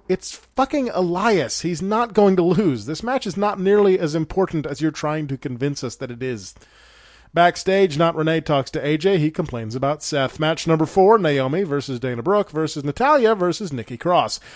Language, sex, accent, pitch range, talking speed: English, male, American, 140-195 Hz, 190 wpm